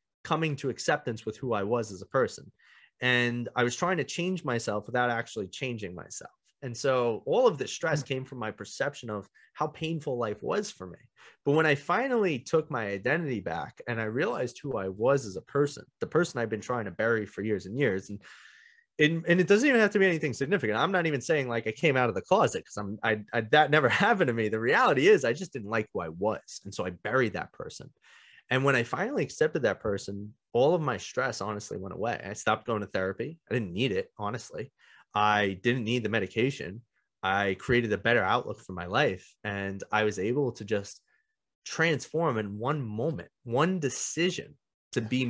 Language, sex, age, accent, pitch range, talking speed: English, male, 30-49, American, 105-155 Hz, 215 wpm